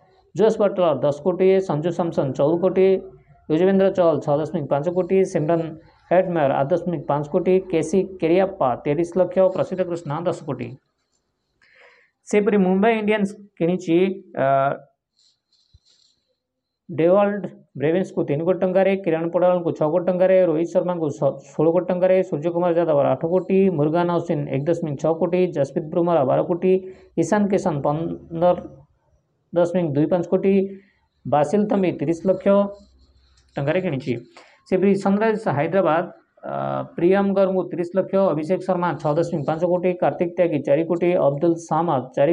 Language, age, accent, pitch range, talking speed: Hindi, 20-39, native, 160-185 Hz, 135 wpm